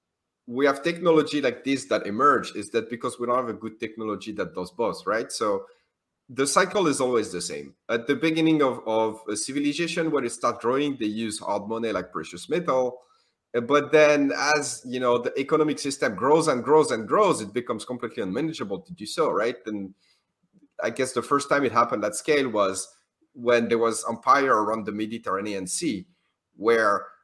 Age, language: 30-49, English